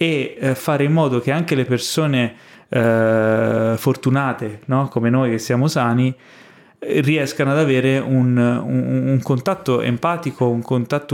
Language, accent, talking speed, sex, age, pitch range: Italian, native, 140 wpm, male, 20-39, 120-140 Hz